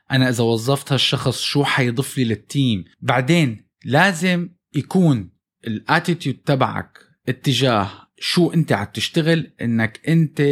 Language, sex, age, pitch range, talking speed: Arabic, male, 20-39, 120-155 Hz, 110 wpm